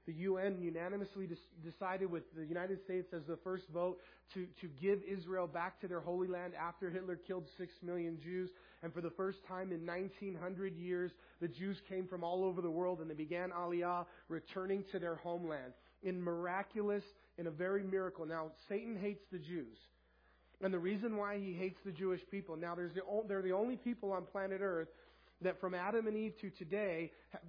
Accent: American